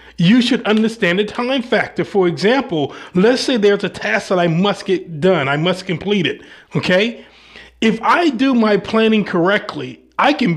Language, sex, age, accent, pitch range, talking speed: English, male, 30-49, American, 185-220 Hz, 175 wpm